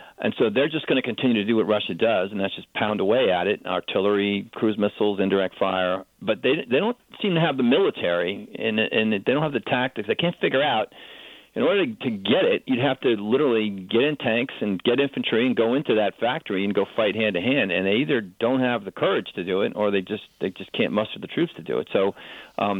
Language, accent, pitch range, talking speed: English, American, 95-115 Hz, 245 wpm